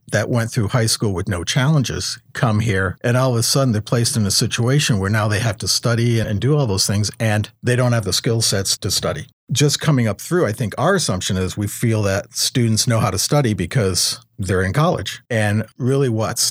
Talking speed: 235 wpm